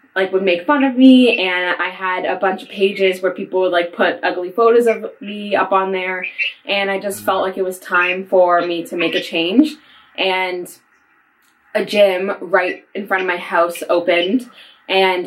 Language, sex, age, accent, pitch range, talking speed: English, female, 10-29, American, 180-220 Hz, 195 wpm